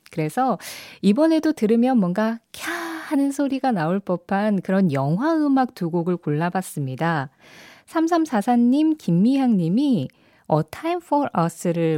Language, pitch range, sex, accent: Korean, 160-230 Hz, female, native